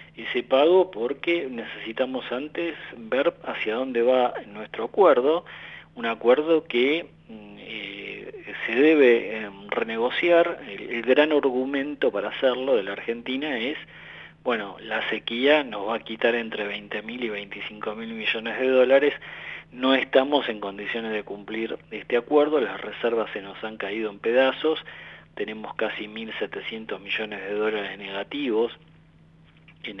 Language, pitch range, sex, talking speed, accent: Italian, 110-150 Hz, male, 135 wpm, Argentinian